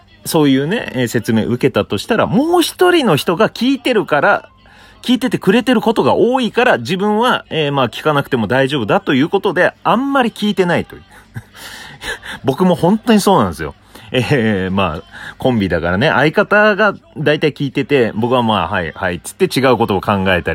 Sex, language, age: male, Japanese, 30-49